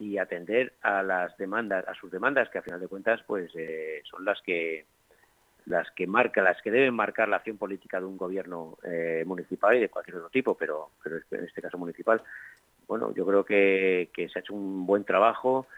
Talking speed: 210 wpm